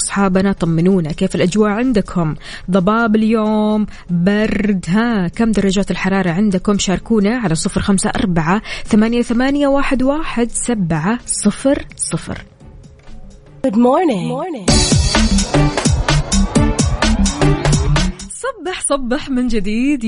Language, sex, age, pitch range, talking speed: Arabic, female, 20-39, 185-230 Hz, 60 wpm